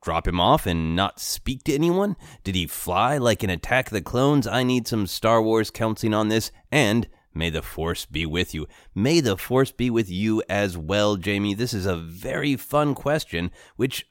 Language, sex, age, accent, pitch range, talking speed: English, male, 30-49, American, 85-125 Hz, 205 wpm